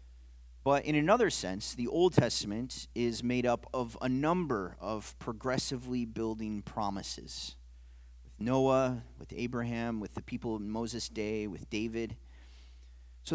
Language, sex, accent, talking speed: English, male, American, 135 wpm